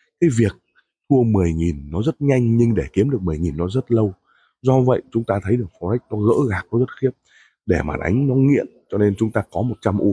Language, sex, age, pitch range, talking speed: Vietnamese, male, 20-39, 90-120 Hz, 235 wpm